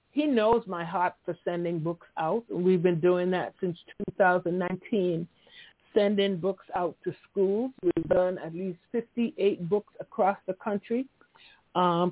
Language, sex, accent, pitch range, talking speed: English, female, American, 180-225 Hz, 145 wpm